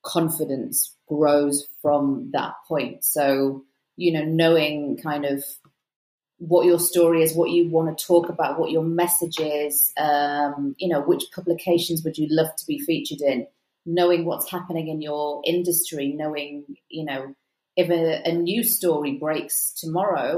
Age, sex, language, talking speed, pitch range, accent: 30-49, female, English, 155 wpm, 155-180 Hz, British